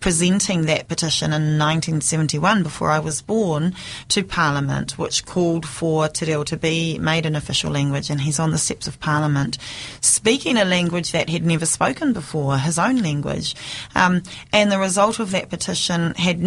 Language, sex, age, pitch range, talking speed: English, female, 30-49, 150-180 Hz, 170 wpm